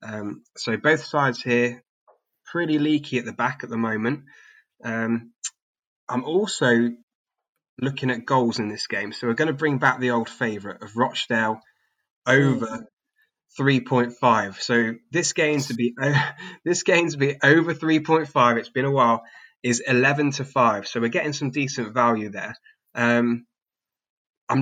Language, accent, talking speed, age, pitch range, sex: English, British, 155 wpm, 20-39, 115-145 Hz, male